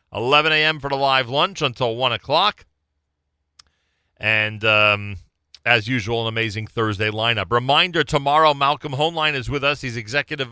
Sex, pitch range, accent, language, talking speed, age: male, 95-145 Hz, American, English, 150 wpm, 40-59